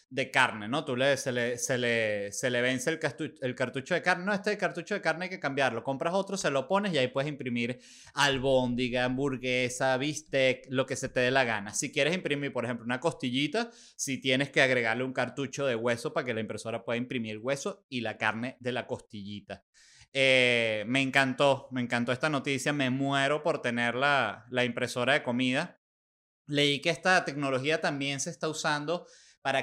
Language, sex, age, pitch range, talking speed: Spanish, male, 20-39, 125-170 Hz, 205 wpm